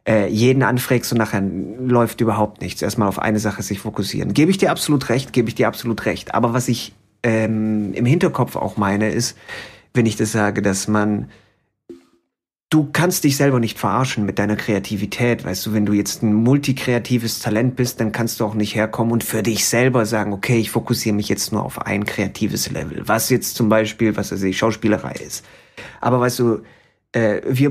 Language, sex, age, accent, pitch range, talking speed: German, male, 30-49, German, 105-125 Hz, 195 wpm